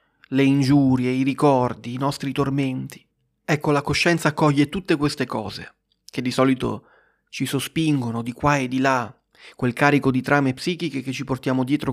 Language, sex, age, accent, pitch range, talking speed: Italian, male, 30-49, native, 125-150 Hz, 165 wpm